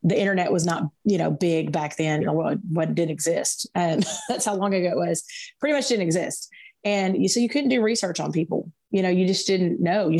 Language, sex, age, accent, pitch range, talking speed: English, female, 30-49, American, 160-185 Hz, 225 wpm